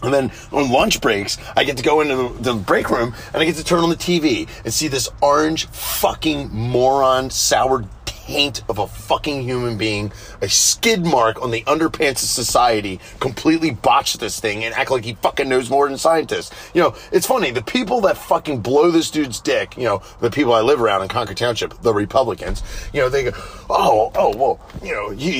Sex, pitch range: male, 110-155 Hz